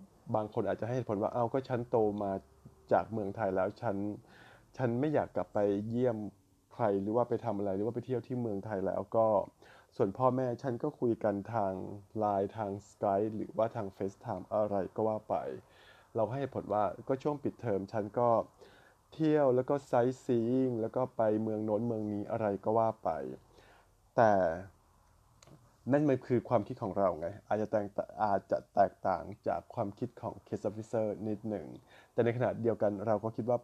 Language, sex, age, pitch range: Thai, male, 20-39, 100-120 Hz